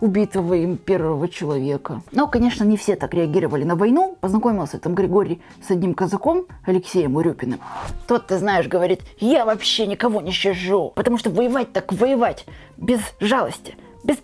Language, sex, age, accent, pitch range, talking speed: Russian, female, 20-39, native, 175-245 Hz, 155 wpm